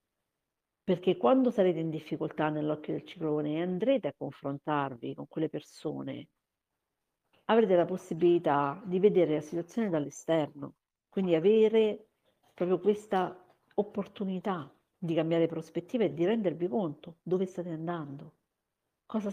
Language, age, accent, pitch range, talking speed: Italian, 50-69, native, 145-180 Hz, 120 wpm